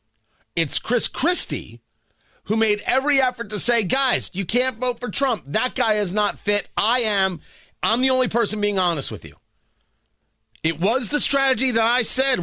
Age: 40-59